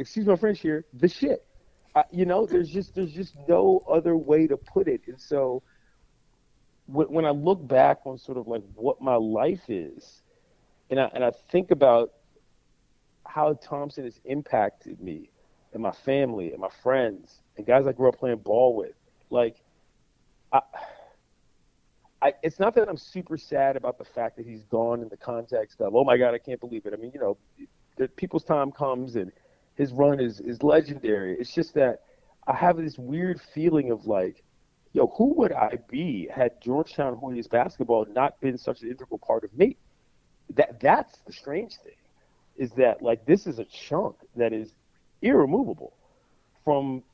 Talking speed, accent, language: 180 wpm, American, English